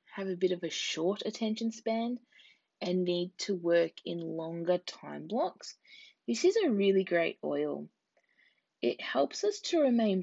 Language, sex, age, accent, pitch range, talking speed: English, female, 20-39, Australian, 175-255 Hz, 160 wpm